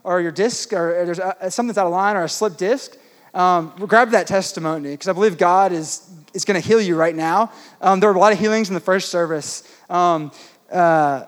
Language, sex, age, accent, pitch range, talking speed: English, male, 20-39, American, 170-215 Hz, 230 wpm